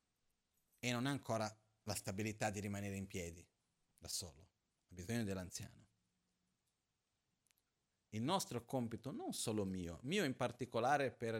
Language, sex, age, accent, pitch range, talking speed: Italian, male, 40-59, native, 100-120 Hz, 130 wpm